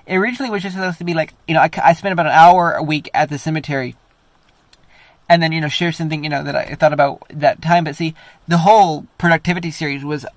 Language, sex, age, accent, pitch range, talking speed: English, male, 20-39, American, 140-180 Hz, 245 wpm